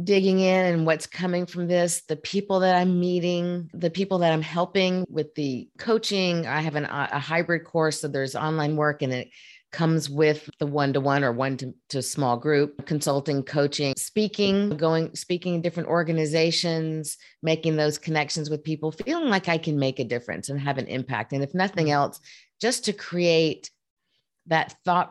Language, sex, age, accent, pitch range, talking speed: English, female, 40-59, American, 140-170 Hz, 170 wpm